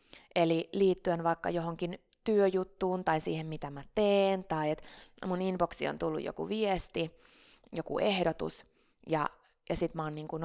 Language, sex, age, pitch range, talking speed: Finnish, female, 20-39, 170-225 Hz, 150 wpm